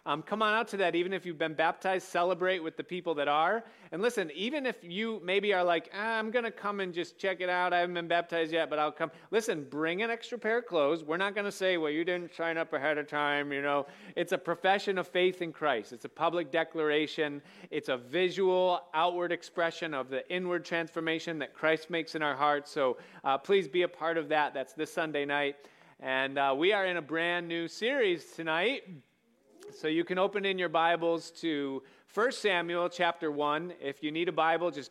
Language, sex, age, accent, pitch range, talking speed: English, male, 30-49, American, 150-185 Hz, 220 wpm